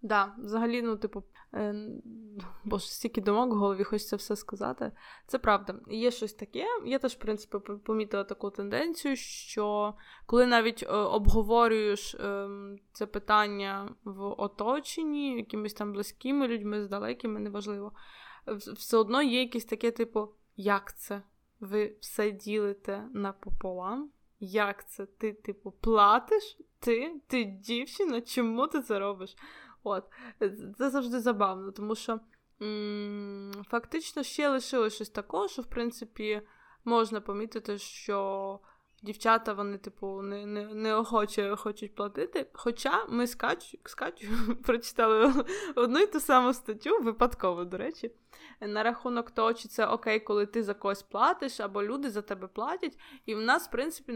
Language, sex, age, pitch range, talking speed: Ukrainian, female, 20-39, 205-245 Hz, 145 wpm